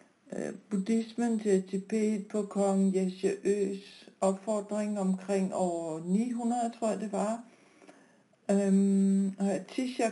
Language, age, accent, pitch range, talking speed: Danish, 60-79, native, 190-225 Hz, 100 wpm